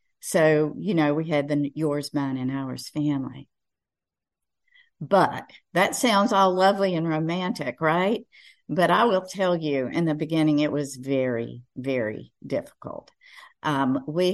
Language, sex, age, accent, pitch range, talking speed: English, female, 50-69, American, 155-225 Hz, 140 wpm